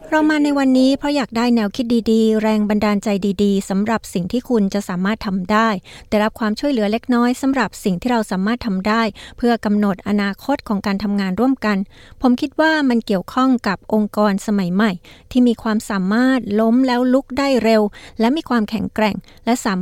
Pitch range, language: 200-235 Hz, Thai